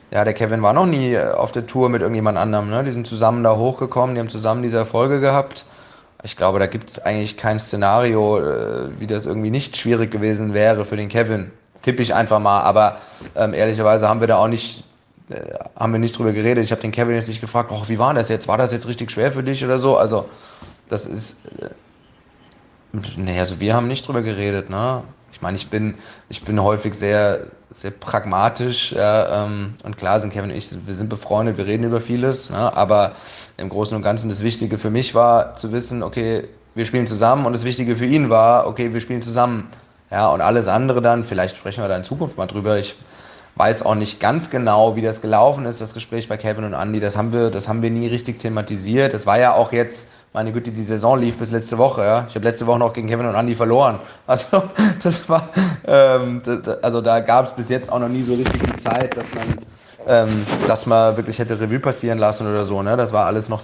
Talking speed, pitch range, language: 225 wpm, 105-120 Hz, German